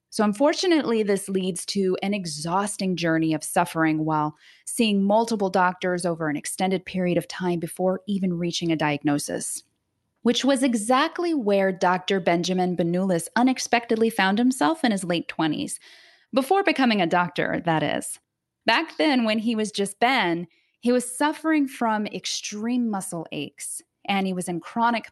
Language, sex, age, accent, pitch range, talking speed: English, female, 20-39, American, 170-235 Hz, 155 wpm